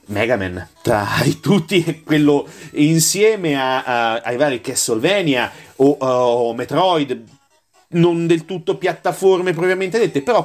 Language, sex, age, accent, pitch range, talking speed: Italian, male, 30-49, native, 125-170 Hz, 125 wpm